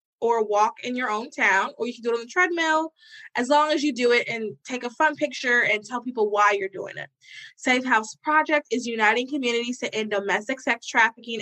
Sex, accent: female, American